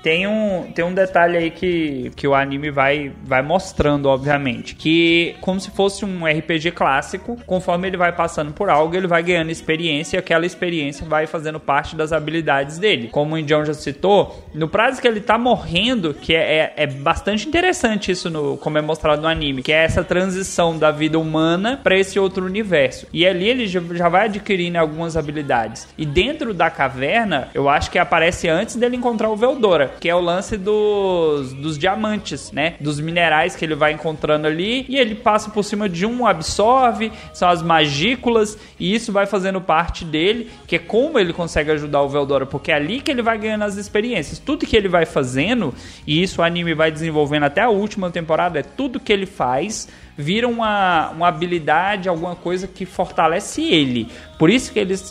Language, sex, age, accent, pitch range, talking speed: Portuguese, male, 20-39, Brazilian, 155-205 Hz, 190 wpm